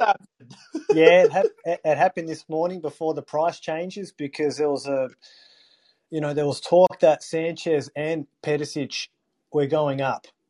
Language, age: English, 20-39